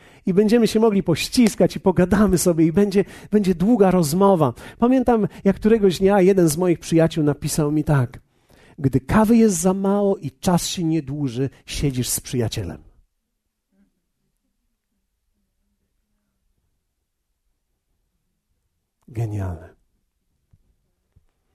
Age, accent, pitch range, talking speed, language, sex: 50-69, native, 120-195 Hz, 105 wpm, Polish, male